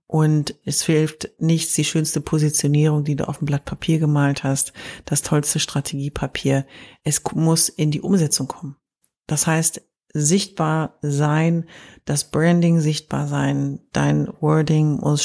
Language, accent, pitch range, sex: German, German, 145-175 Hz, female